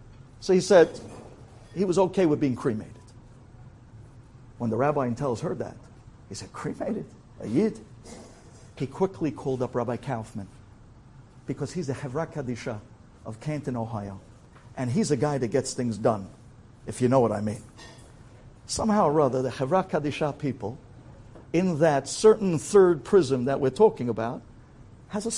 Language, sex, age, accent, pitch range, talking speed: English, male, 60-79, American, 120-170 Hz, 160 wpm